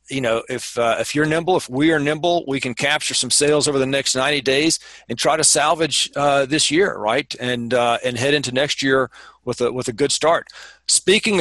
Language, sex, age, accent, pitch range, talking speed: English, male, 40-59, American, 120-150 Hz, 225 wpm